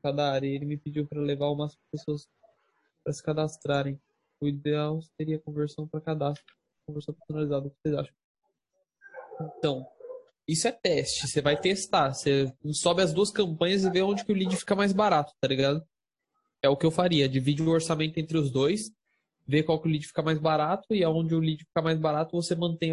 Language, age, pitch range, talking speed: Portuguese, 10-29, 150-195 Hz, 200 wpm